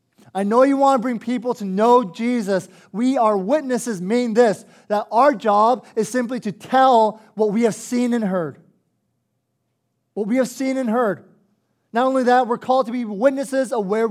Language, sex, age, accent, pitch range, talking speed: English, male, 20-39, American, 180-235 Hz, 185 wpm